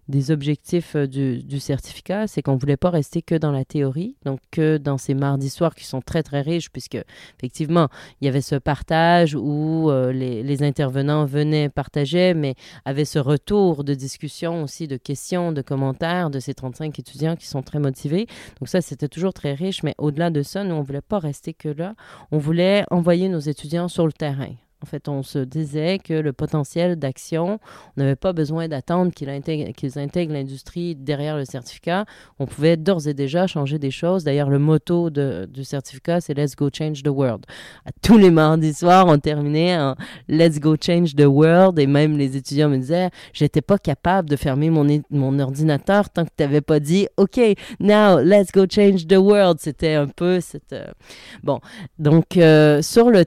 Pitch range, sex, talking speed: 140-175 Hz, female, 205 wpm